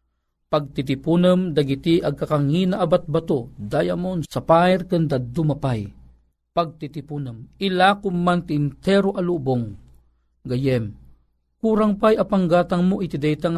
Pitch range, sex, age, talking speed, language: 125-200 Hz, male, 50-69, 90 wpm, Filipino